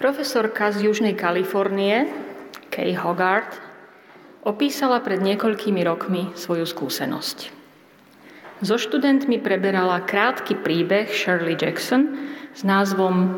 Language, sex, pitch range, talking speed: Slovak, female, 175-220 Hz, 95 wpm